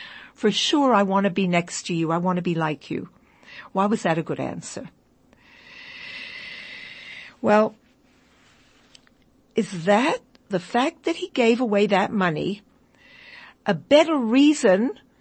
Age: 60-79